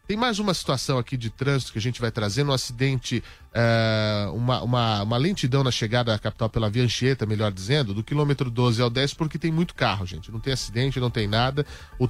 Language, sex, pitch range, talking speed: Portuguese, male, 115-145 Hz, 225 wpm